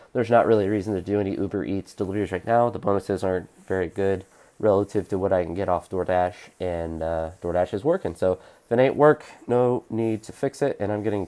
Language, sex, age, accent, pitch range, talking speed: English, male, 20-39, American, 80-100 Hz, 235 wpm